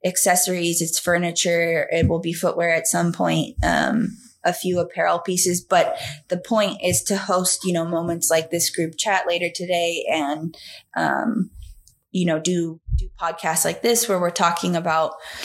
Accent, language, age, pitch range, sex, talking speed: American, English, 20-39, 165-180 Hz, female, 165 wpm